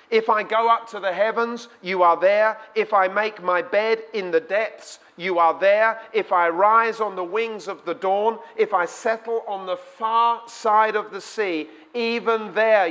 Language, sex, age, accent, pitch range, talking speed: English, male, 40-59, British, 155-225 Hz, 195 wpm